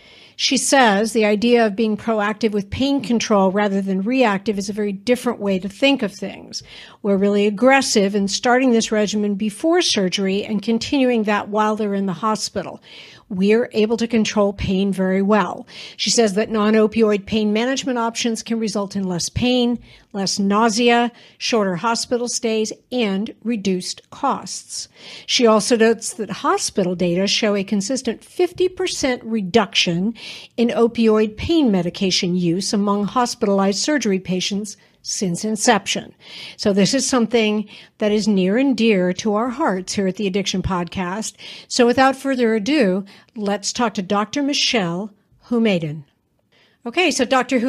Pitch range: 200-245 Hz